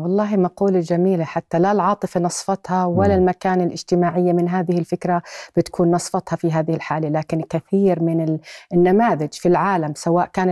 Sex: female